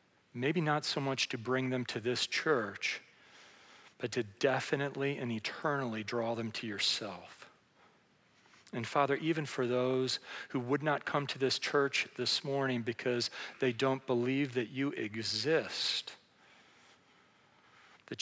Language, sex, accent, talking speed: English, male, American, 135 wpm